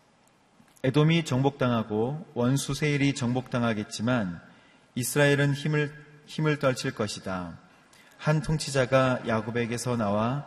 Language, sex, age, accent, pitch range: Korean, male, 30-49, native, 110-135 Hz